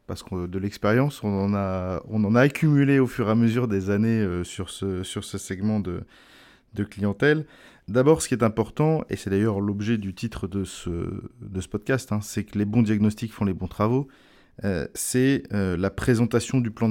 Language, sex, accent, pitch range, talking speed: French, male, French, 100-125 Hz, 210 wpm